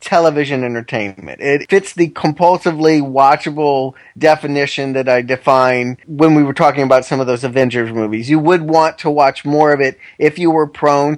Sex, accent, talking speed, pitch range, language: male, American, 175 wpm, 130-175 Hz, English